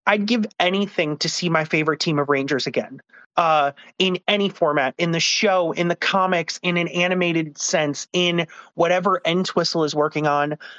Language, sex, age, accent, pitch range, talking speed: English, male, 30-49, American, 150-185 Hz, 170 wpm